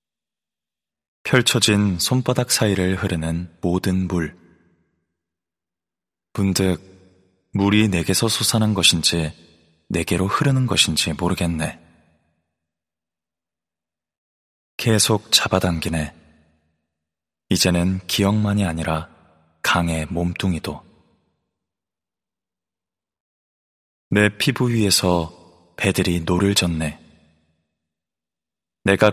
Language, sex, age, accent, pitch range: Korean, male, 20-39, native, 80-95 Hz